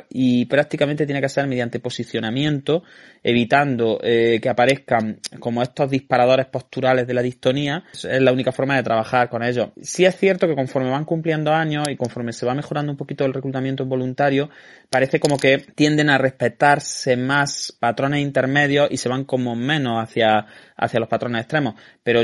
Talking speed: 175 wpm